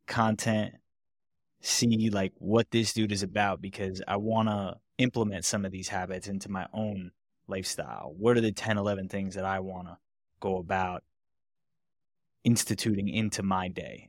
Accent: American